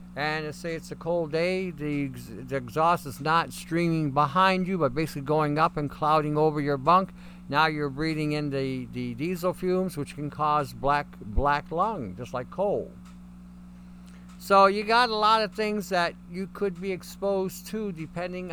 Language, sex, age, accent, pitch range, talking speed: English, male, 60-79, American, 140-185 Hz, 175 wpm